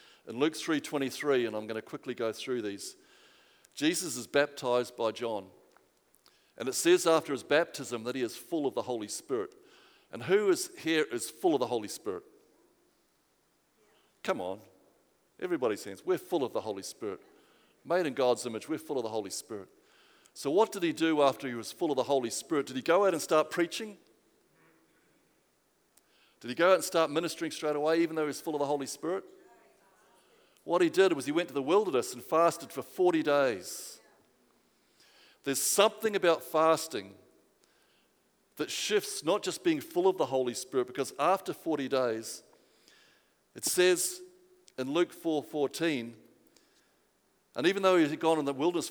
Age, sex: 50-69, male